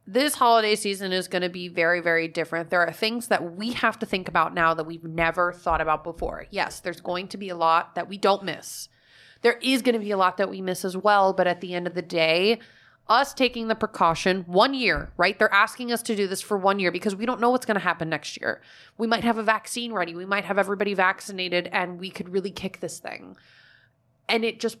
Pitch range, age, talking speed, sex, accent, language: 175-205 Hz, 30-49, 250 wpm, female, American, English